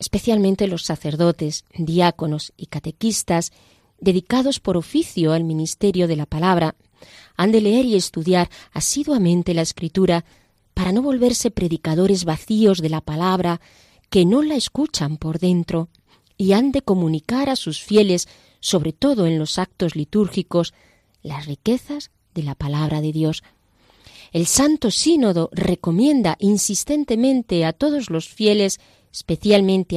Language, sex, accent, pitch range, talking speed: Spanish, female, Spanish, 160-205 Hz, 130 wpm